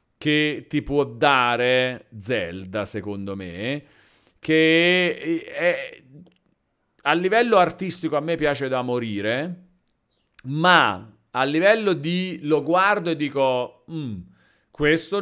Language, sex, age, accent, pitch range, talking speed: Italian, male, 40-59, native, 120-170 Hz, 105 wpm